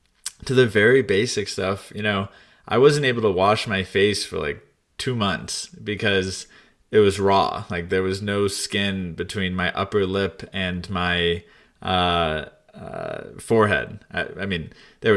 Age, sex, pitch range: 20-39, male, 95-115 Hz